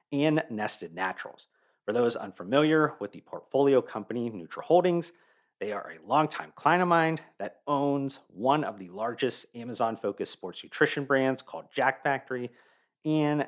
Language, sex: English, male